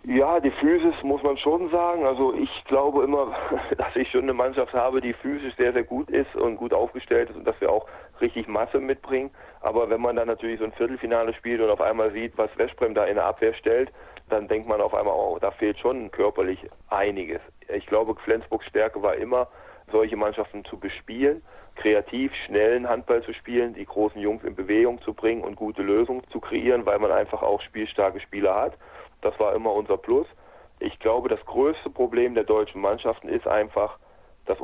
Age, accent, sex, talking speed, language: 40-59, German, male, 200 wpm, German